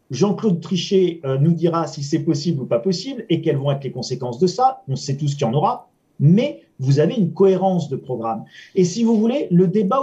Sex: male